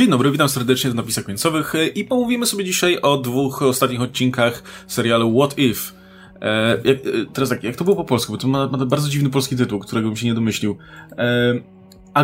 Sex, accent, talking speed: male, native, 210 wpm